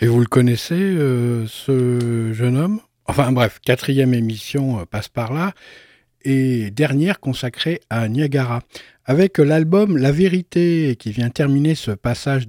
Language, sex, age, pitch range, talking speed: French, male, 60-79, 120-155 Hz, 140 wpm